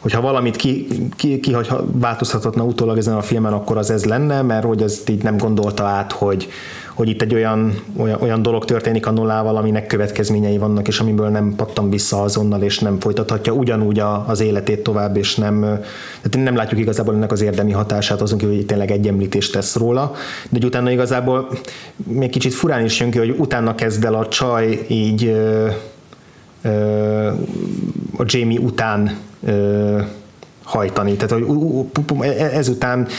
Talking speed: 165 wpm